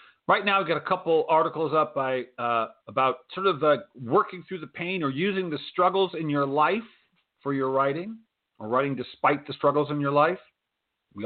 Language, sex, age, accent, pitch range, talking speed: English, male, 40-59, American, 125-170 Hz, 195 wpm